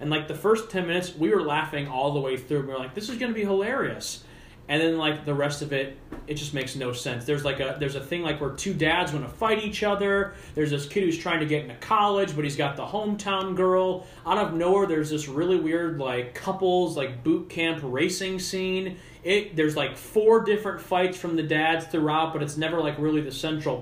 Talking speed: 235 wpm